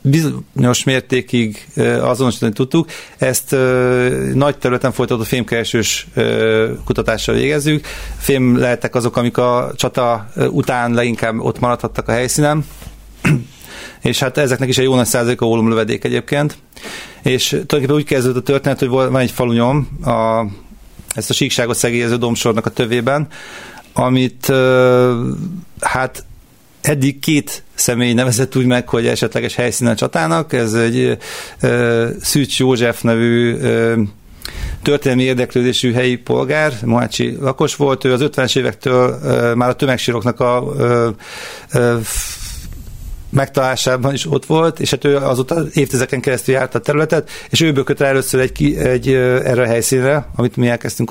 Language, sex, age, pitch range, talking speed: Hungarian, male, 40-59, 120-135 Hz, 140 wpm